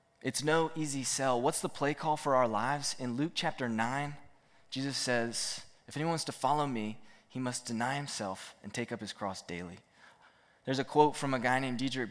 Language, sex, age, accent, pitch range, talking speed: English, male, 20-39, American, 105-135 Hz, 205 wpm